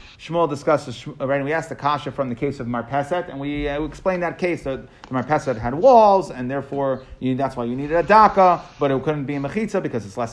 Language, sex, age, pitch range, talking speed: English, male, 30-49, 130-170 Hz, 240 wpm